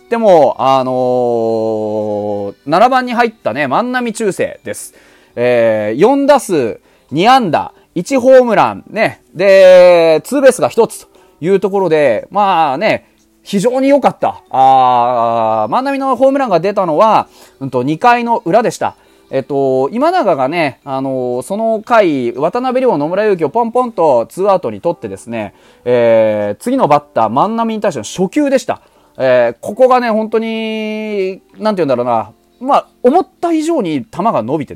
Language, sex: Japanese, male